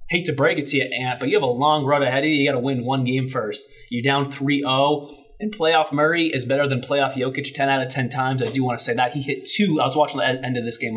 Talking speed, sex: 305 wpm, male